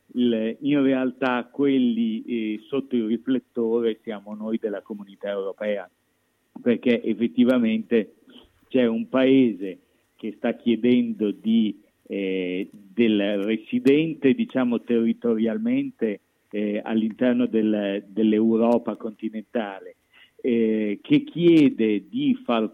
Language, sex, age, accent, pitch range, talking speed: Italian, male, 50-69, native, 105-125 Hz, 90 wpm